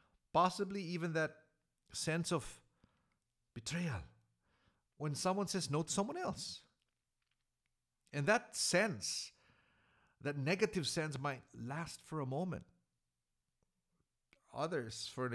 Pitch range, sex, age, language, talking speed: 110-155 Hz, male, 50-69, English, 105 wpm